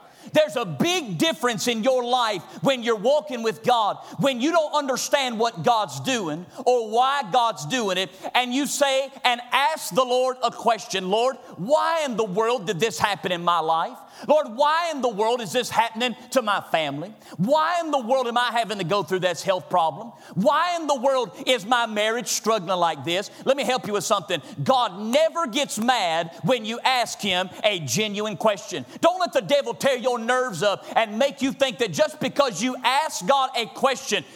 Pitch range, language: 205-275 Hz, English